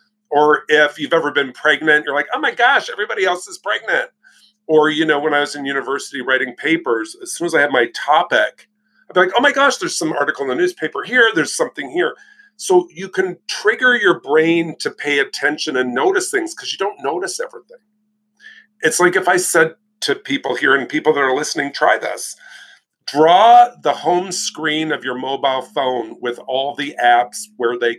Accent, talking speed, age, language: American, 200 wpm, 40-59, English